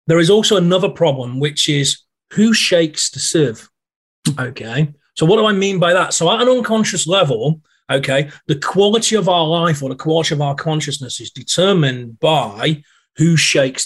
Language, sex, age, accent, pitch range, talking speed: English, male, 30-49, British, 140-170 Hz, 180 wpm